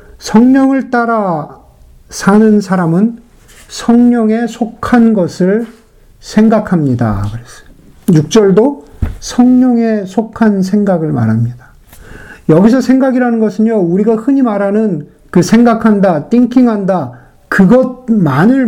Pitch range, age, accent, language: 150-225 Hz, 50-69, native, Korean